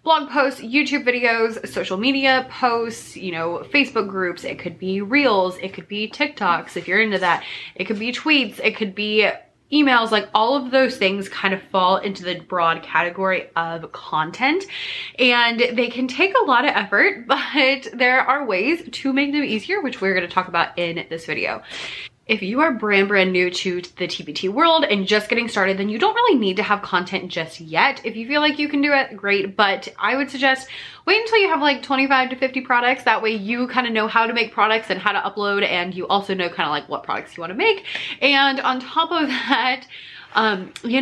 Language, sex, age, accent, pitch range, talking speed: English, female, 20-39, American, 190-270 Hz, 220 wpm